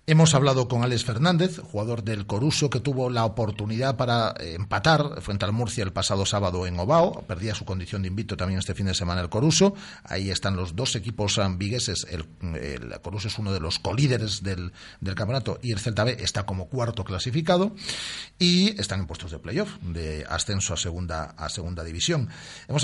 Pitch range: 95-140 Hz